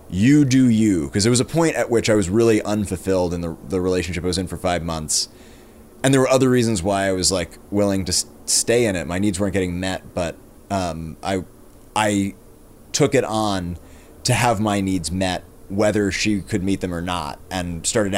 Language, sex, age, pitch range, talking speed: English, male, 30-49, 90-110 Hz, 215 wpm